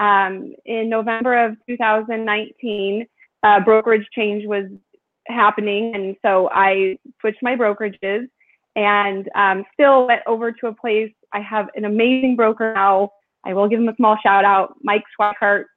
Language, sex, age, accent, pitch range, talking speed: English, female, 20-39, American, 200-240 Hz, 150 wpm